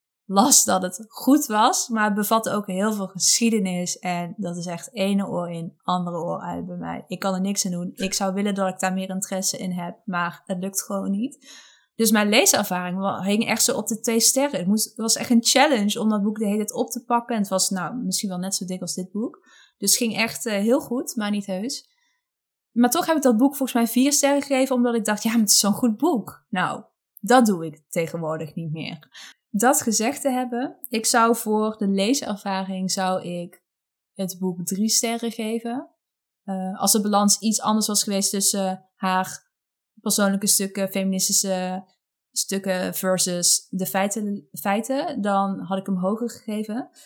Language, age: Dutch, 20-39